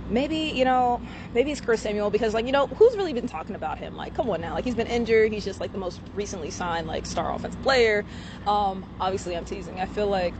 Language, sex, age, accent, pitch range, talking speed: English, female, 20-39, American, 175-210 Hz, 250 wpm